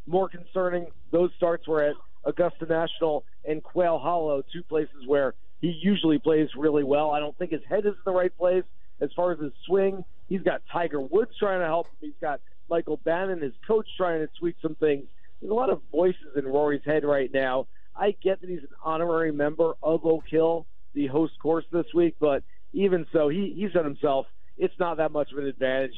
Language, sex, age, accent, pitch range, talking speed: English, male, 50-69, American, 150-175 Hz, 215 wpm